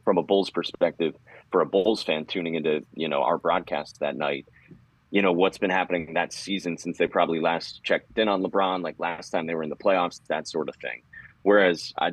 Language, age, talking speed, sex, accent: English, 30-49, 225 wpm, male, American